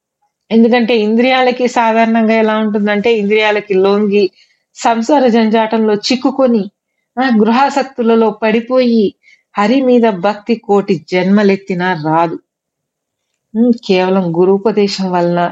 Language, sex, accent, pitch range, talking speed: Telugu, female, native, 195-240 Hz, 85 wpm